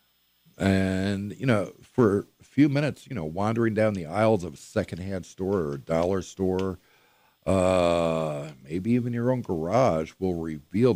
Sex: male